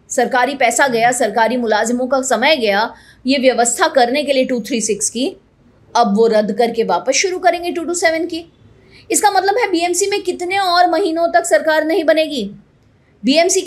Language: Hindi